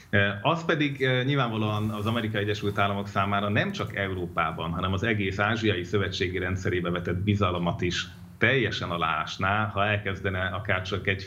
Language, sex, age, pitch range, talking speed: Hungarian, male, 30-49, 90-105 Hz, 145 wpm